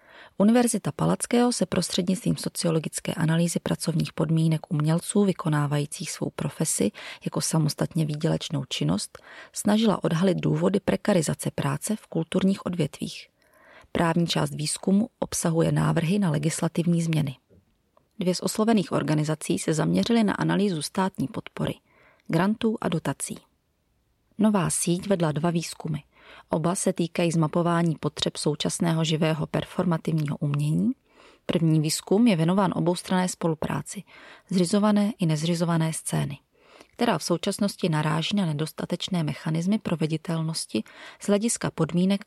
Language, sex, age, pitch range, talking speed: Czech, female, 30-49, 155-195 Hz, 115 wpm